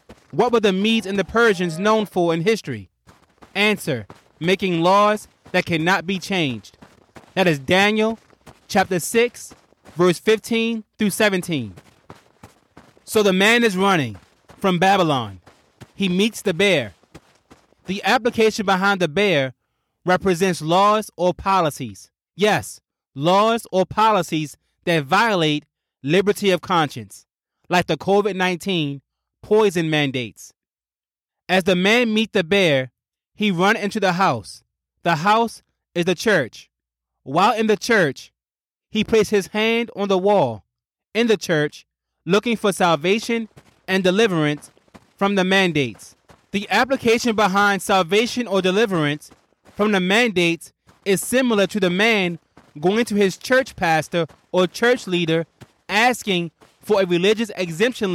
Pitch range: 165-210 Hz